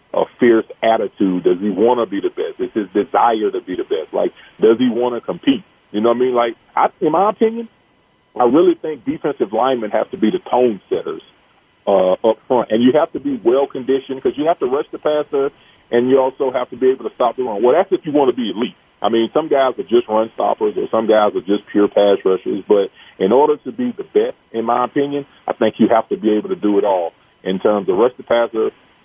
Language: English